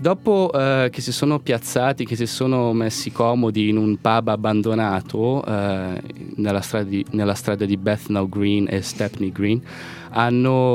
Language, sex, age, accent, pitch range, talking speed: Italian, male, 20-39, native, 100-125 Hz, 155 wpm